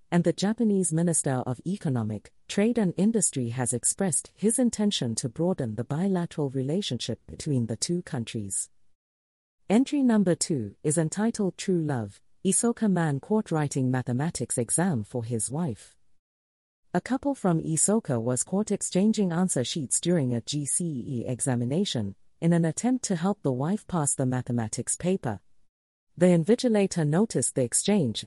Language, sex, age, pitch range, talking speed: English, female, 40-59, 120-190 Hz, 140 wpm